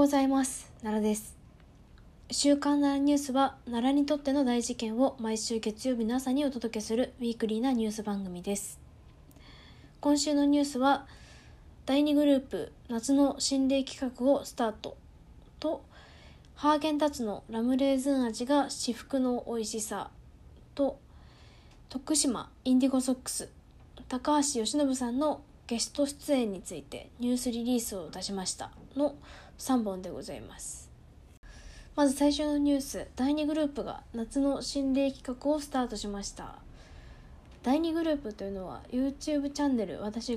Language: Japanese